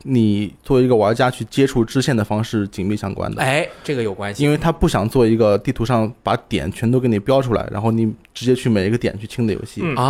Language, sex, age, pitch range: Chinese, male, 20-39, 105-130 Hz